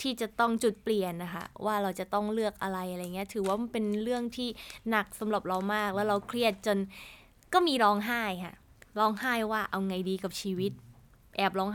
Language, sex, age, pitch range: Thai, female, 20-39, 190-230 Hz